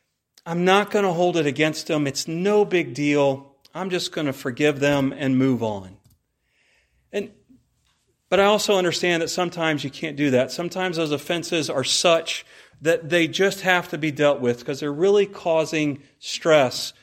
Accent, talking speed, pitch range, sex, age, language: American, 175 wpm, 145-185 Hz, male, 40-59, English